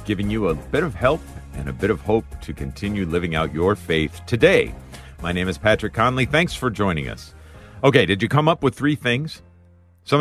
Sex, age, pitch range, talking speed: male, 50-69, 75-120 Hz, 210 wpm